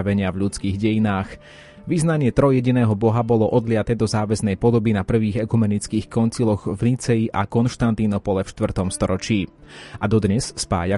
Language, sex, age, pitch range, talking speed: Slovak, male, 30-49, 100-120 Hz, 120 wpm